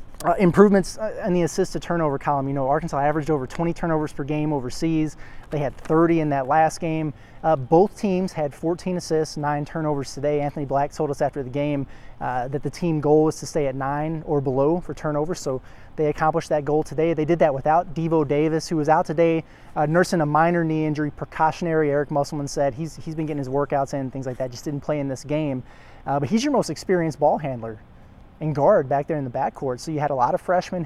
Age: 30-49